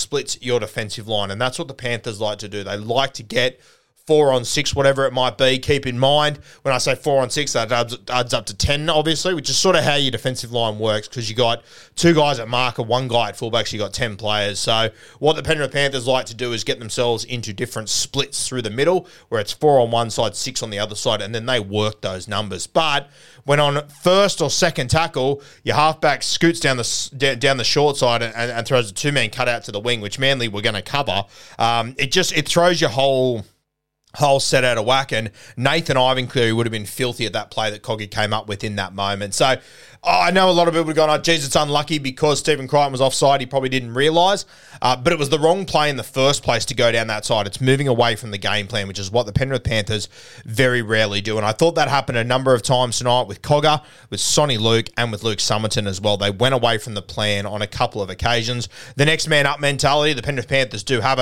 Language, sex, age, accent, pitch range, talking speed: English, male, 30-49, Australian, 110-140 Hz, 250 wpm